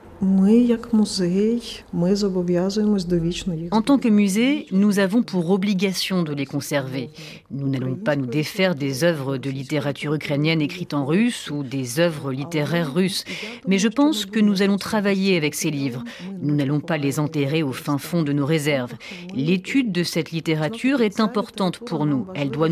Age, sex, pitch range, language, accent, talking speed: 40-59, female, 160-215 Hz, French, French, 160 wpm